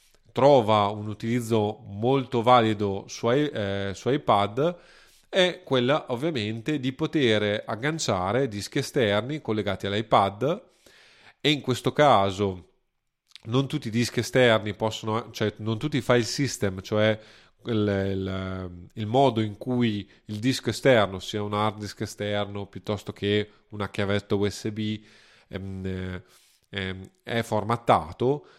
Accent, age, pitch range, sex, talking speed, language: native, 30-49, 100-125 Hz, male, 120 wpm, Italian